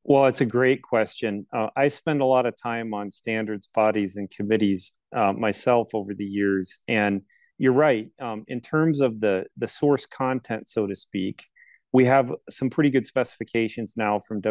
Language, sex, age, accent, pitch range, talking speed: English, male, 40-59, American, 105-130 Hz, 180 wpm